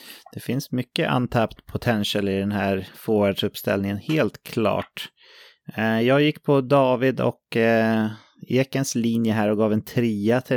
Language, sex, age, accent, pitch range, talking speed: English, male, 30-49, Swedish, 100-130 Hz, 135 wpm